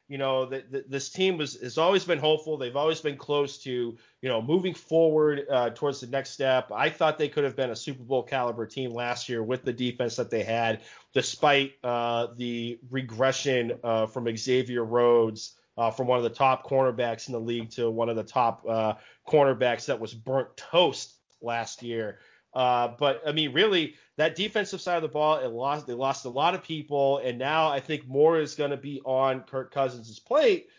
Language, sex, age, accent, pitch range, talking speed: English, male, 30-49, American, 125-160 Hz, 200 wpm